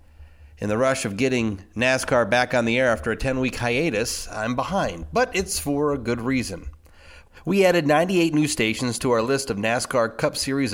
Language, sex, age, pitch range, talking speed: English, male, 30-49, 105-150 Hz, 190 wpm